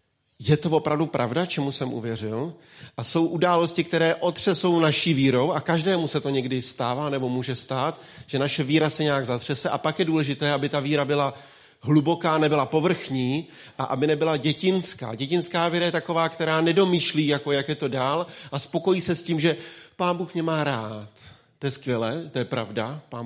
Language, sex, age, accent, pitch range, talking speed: Czech, male, 40-59, native, 135-165 Hz, 190 wpm